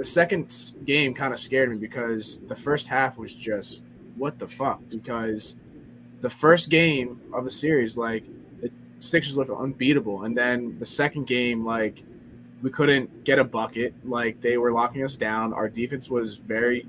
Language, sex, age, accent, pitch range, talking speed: English, male, 20-39, American, 115-135 Hz, 175 wpm